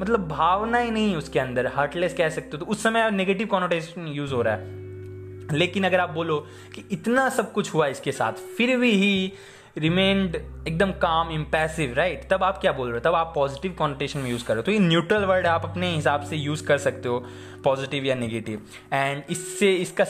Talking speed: 110 wpm